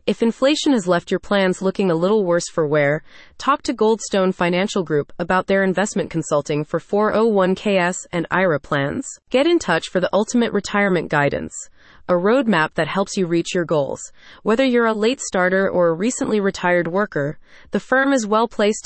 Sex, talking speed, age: female, 180 wpm, 30-49